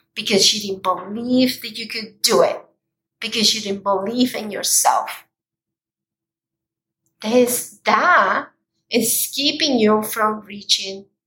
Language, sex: English, female